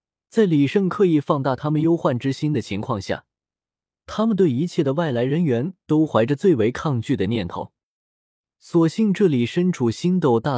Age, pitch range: 20-39, 115-170 Hz